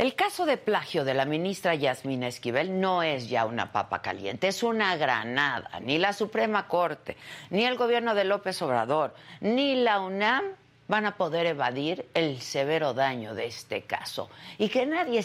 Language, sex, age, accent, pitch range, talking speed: Spanish, female, 50-69, Mexican, 130-205 Hz, 175 wpm